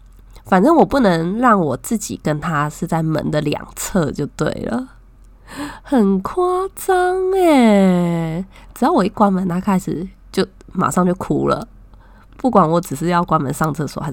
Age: 20-39